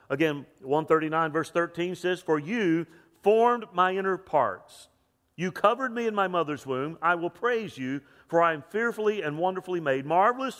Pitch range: 155-200 Hz